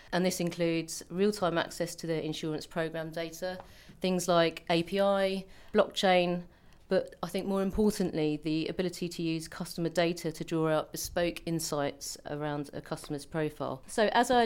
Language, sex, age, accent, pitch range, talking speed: English, female, 40-59, British, 155-185 Hz, 155 wpm